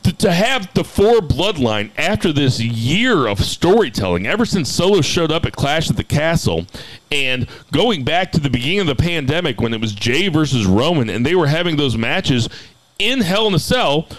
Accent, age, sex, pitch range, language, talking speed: American, 40-59, male, 130-180 Hz, English, 195 wpm